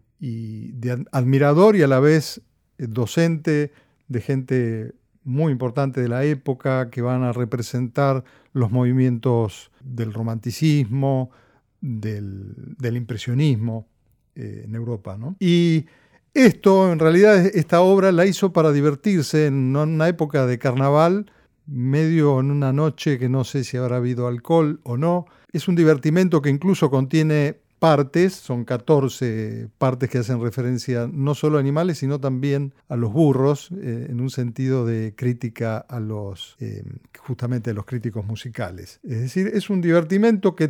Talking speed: 145 wpm